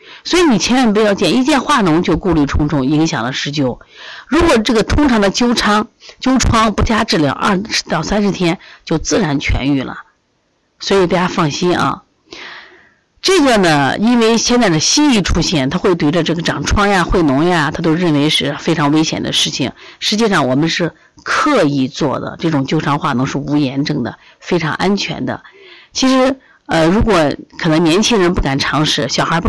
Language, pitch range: Chinese, 145-210 Hz